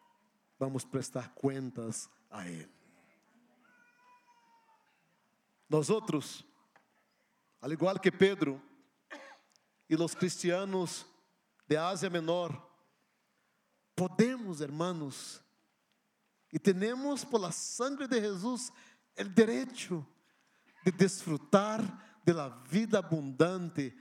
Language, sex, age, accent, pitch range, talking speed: English, male, 50-69, Brazilian, 195-265 Hz, 85 wpm